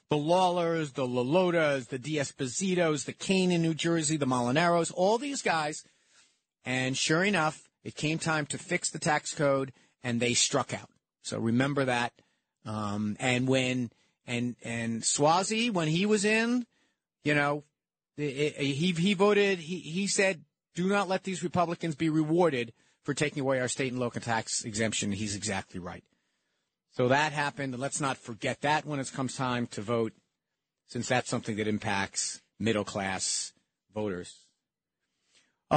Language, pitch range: English, 130-180 Hz